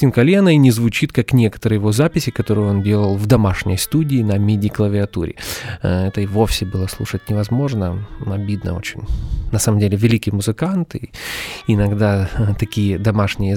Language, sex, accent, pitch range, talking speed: Russian, male, native, 105-130 Hz, 145 wpm